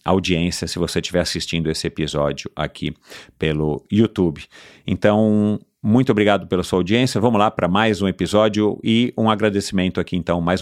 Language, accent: Portuguese, Brazilian